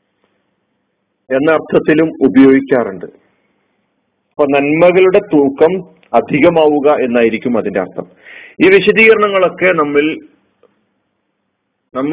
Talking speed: 70 wpm